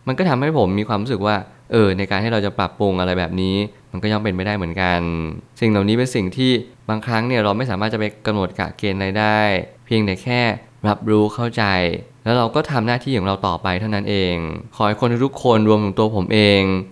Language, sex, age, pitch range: Thai, male, 20-39, 95-115 Hz